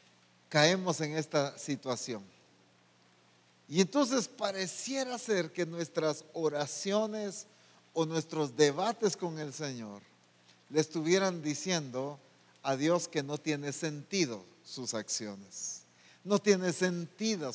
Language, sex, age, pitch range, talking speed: English, male, 50-69, 130-195 Hz, 105 wpm